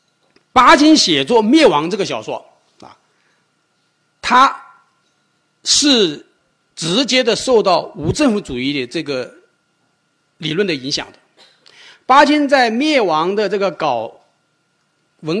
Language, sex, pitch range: Chinese, male, 155-230 Hz